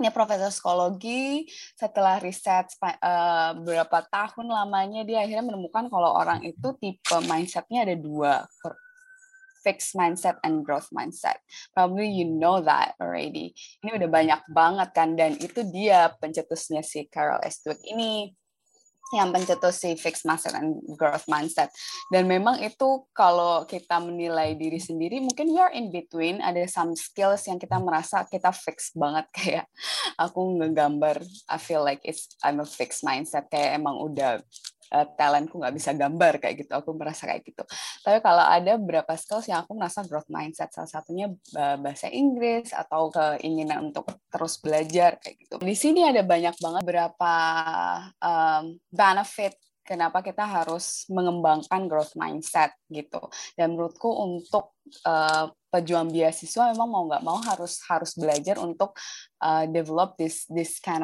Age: 20-39